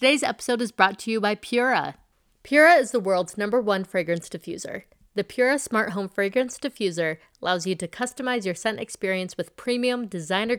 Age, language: 30-49, English